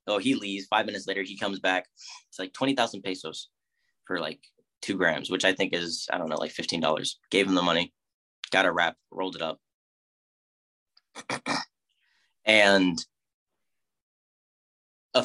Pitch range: 95-115 Hz